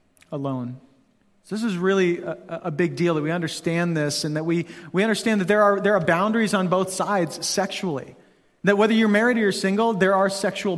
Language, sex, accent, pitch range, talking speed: English, male, American, 170-220 Hz, 210 wpm